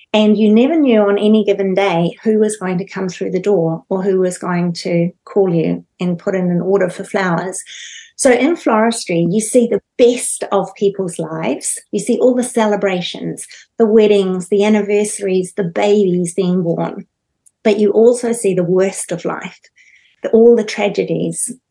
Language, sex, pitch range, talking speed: English, female, 185-225 Hz, 175 wpm